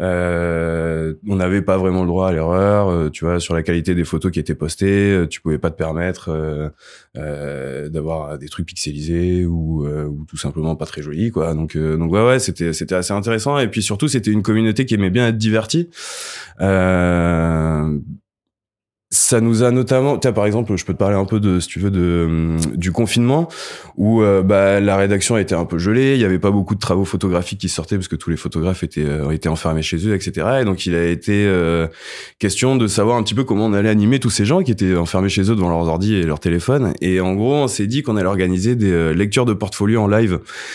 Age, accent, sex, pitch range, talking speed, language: 20-39, French, male, 85-110 Hz, 230 wpm, French